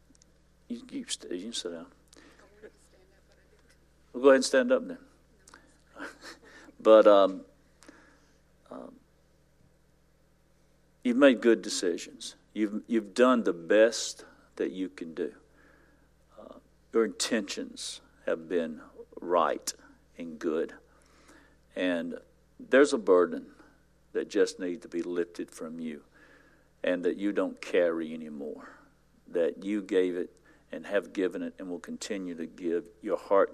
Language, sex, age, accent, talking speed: English, male, 60-79, American, 125 wpm